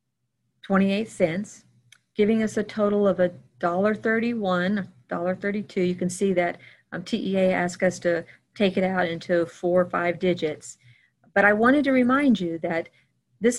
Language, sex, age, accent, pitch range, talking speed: English, female, 40-59, American, 165-205 Hz, 165 wpm